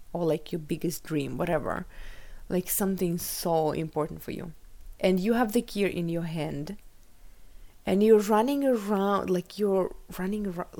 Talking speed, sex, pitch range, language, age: 155 wpm, female, 165-200 Hz, English, 20-39